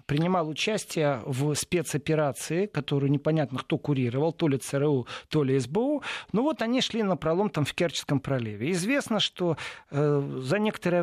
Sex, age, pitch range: male, 40-59, 145-195 Hz